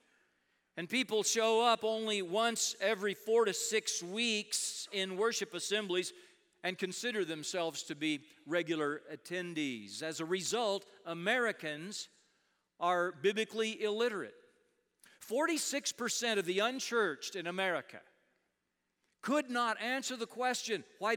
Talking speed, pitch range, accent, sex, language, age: 115 wpm, 165-220 Hz, American, male, English, 40-59